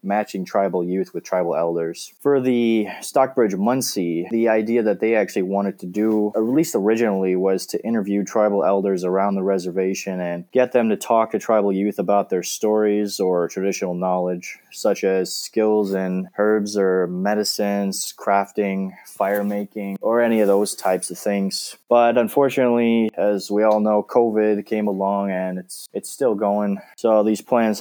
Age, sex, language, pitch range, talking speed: 20-39, male, English, 95-110 Hz, 165 wpm